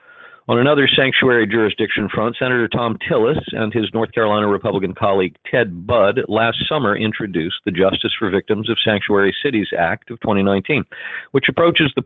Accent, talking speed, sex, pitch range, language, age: American, 160 wpm, male, 105-120 Hz, English, 50-69